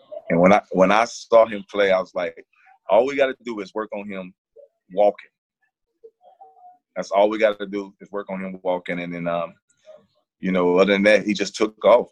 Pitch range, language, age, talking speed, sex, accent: 100-130 Hz, English, 30-49, 210 wpm, male, American